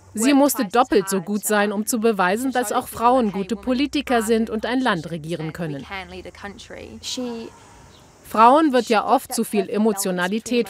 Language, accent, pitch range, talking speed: German, German, 180-245 Hz, 150 wpm